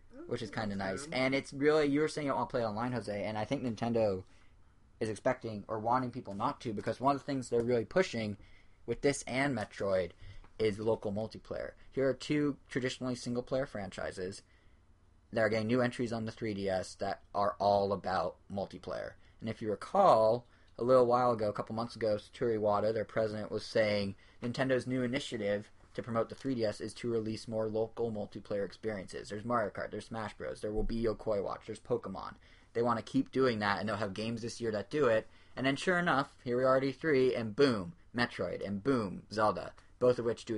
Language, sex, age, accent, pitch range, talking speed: English, male, 20-39, American, 100-125 Hz, 210 wpm